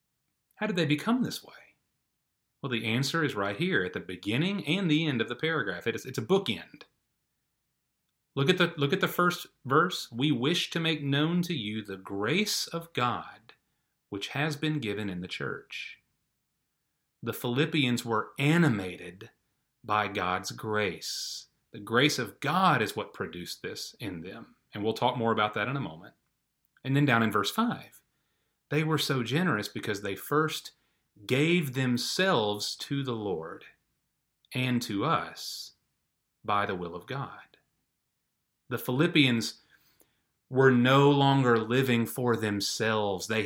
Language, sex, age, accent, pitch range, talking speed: English, male, 30-49, American, 110-155 Hz, 150 wpm